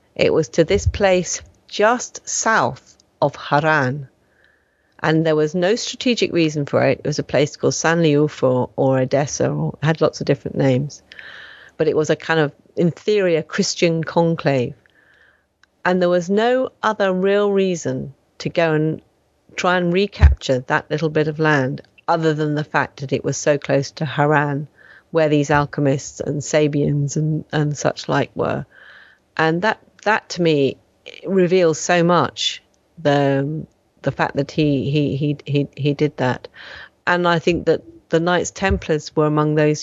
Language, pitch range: English, 145-180 Hz